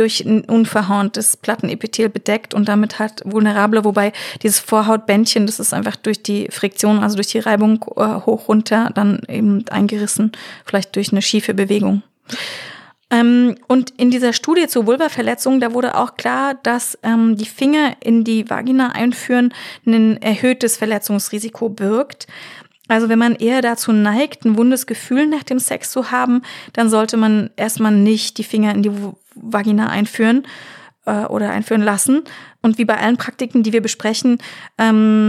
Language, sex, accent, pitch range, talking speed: German, female, German, 210-235 Hz, 160 wpm